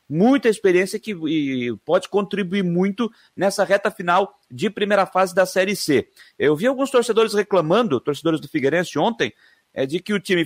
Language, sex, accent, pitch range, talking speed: Portuguese, male, Brazilian, 175-230 Hz, 165 wpm